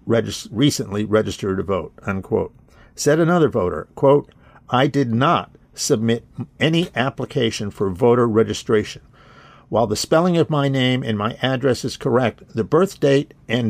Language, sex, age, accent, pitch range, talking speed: English, male, 50-69, American, 110-140 Hz, 140 wpm